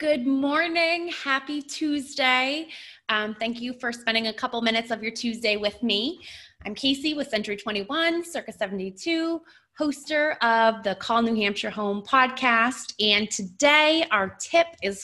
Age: 20-39